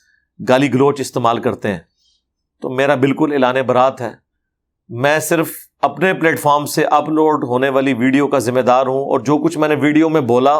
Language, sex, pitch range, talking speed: Urdu, male, 135-180 Hz, 185 wpm